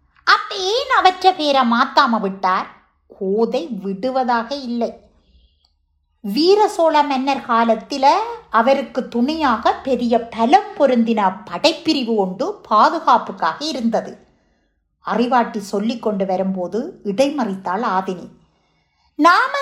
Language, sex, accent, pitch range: Tamil, female, native, 205-295 Hz